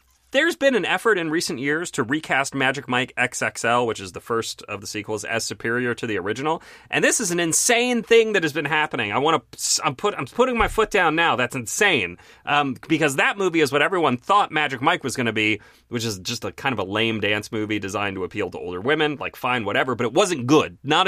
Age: 30-49